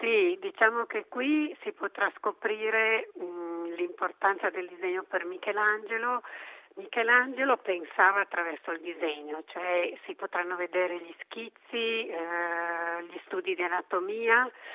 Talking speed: 120 wpm